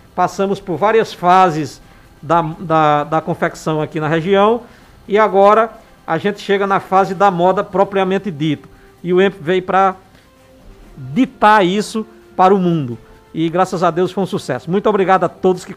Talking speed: 170 wpm